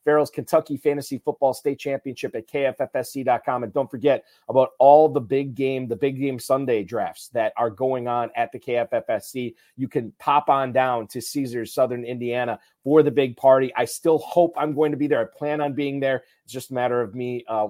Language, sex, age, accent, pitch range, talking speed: English, male, 30-49, American, 120-140 Hz, 205 wpm